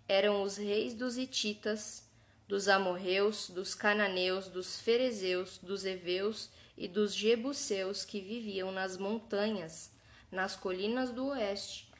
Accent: Brazilian